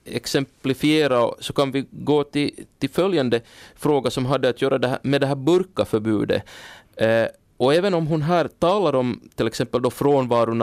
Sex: male